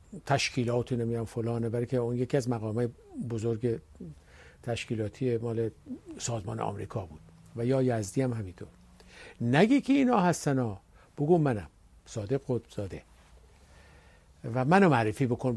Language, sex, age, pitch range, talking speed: Persian, male, 50-69, 110-135 Hz, 125 wpm